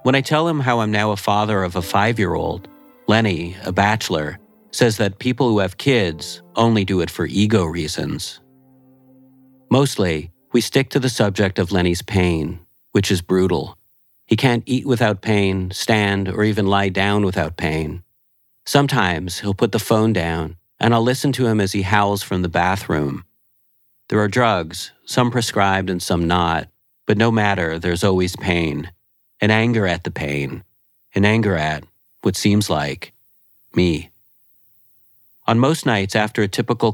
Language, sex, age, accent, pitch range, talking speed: English, male, 40-59, American, 90-115 Hz, 160 wpm